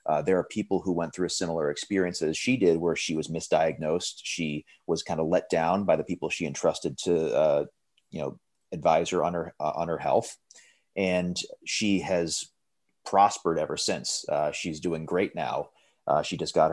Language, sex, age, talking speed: English, male, 30-49, 195 wpm